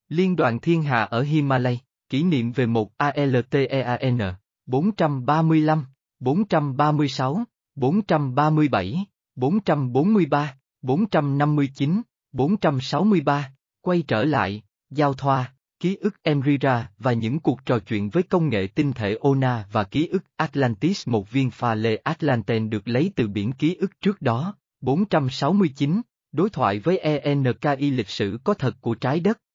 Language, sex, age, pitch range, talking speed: Vietnamese, male, 20-39, 125-155 Hz, 130 wpm